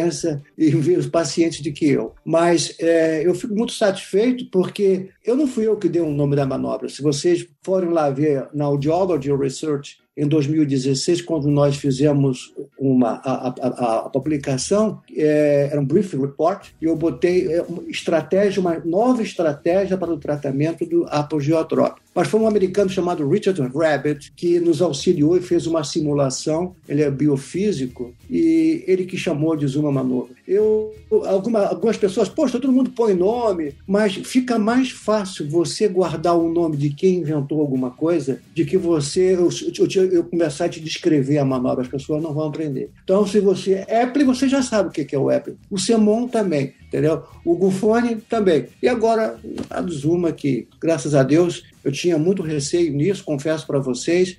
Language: Portuguese